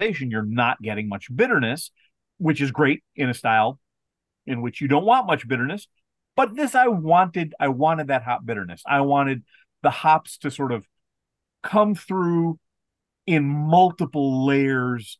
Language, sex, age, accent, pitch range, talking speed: English, male, 40-59, American, 115-145 Hz, 155 wpm